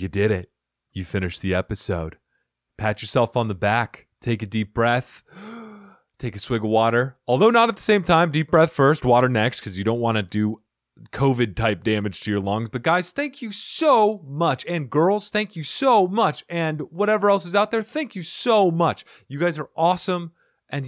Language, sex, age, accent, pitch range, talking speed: English, male, 30-49, American, 105-165 Hz, 205 wpm